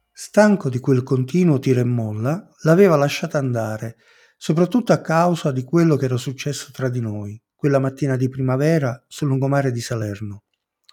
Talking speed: 160 wpm